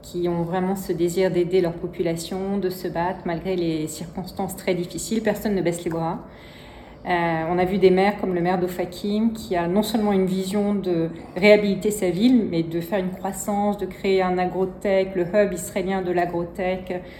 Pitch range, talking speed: 175-200 Hz, 190 wpm